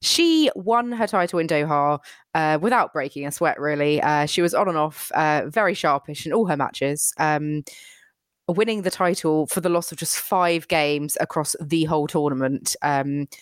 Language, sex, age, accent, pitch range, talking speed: English, female, 20-39, British, 150-220 Hz, 185 wpm